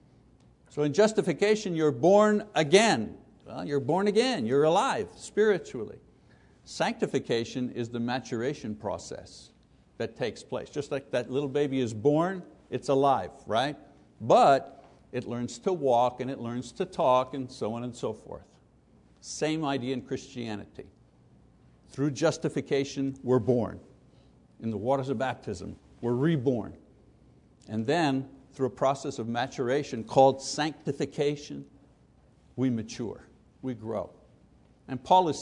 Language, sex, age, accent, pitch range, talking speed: English, male, 60-79, American, 125-165 Hz, 130 wpm